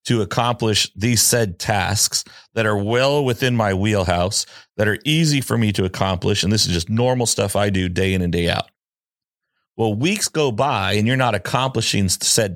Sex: male